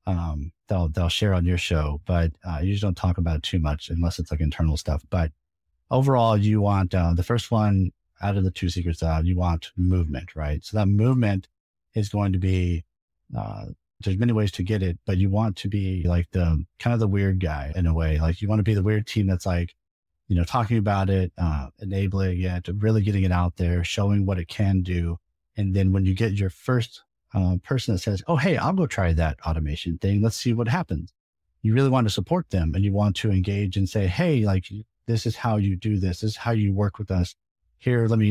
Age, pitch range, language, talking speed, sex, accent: 30-49, 90-110 Hz, English, 235 wpm, male, American